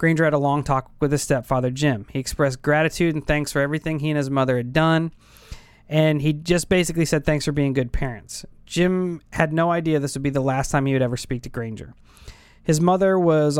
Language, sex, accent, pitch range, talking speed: English, male, American, 130-160 Hz, 225 wpm